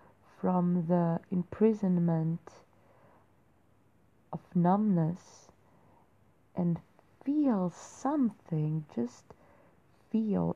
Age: 30-49